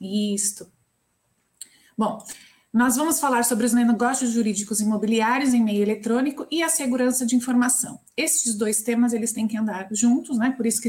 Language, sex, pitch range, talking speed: Portuguese, female, 220-270 Hz, 165 wpm